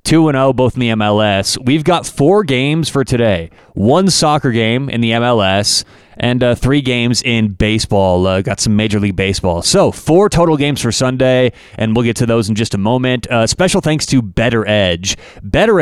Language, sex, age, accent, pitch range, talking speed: English, male, 30-49, American, 110-155 Hz, 195 wpm